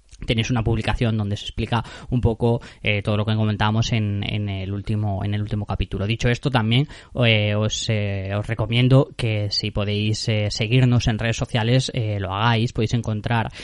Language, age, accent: Spanish, 20-39, Spanish